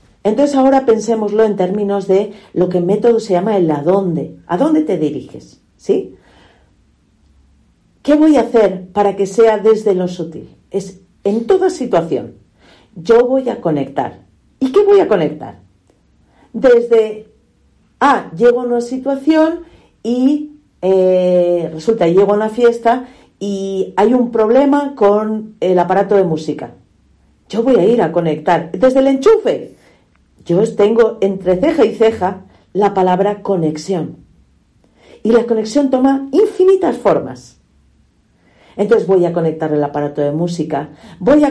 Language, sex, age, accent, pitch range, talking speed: Spanish, female, 50-69, Spanish, 180-235 Hz, 145 wpm